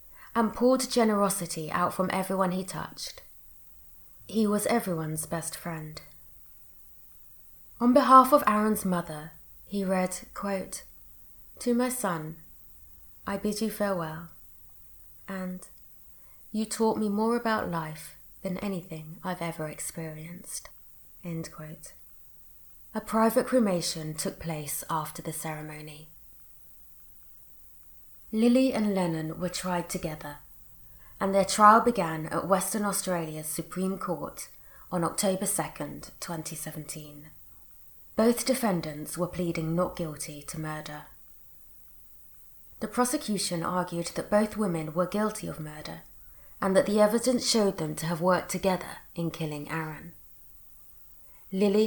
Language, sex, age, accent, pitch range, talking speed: English, female, 20-39, British, 155-205 Hz, 115 wpm